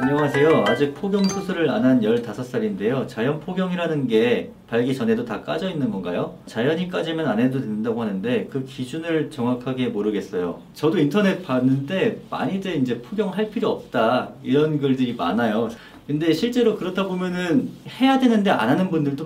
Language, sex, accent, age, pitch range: Korean, male, native, 40-59, 130-215 Hz